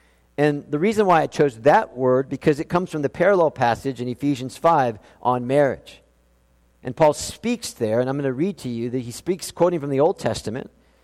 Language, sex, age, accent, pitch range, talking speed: English, male, 50-69, American, 130-200 Hz, 210 wpm